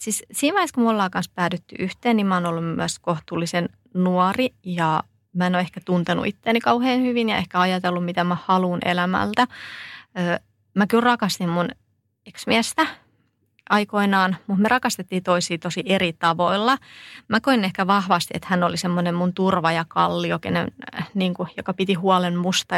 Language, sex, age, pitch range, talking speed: Finnish, female, 20-39, 175-205 Hz, 165 wpm